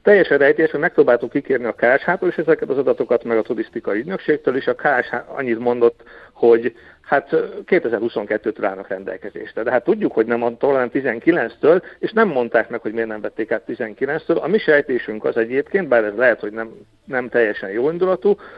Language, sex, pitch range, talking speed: Hungarian, male, 120-185 Hz, 180 wpm